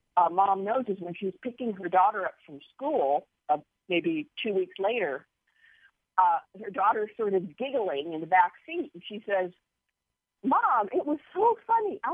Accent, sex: American, female